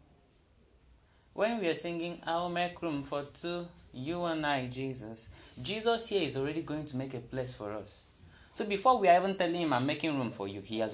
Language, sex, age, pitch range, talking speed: English, male, 20-39, 110-145 Hz, 215 wpm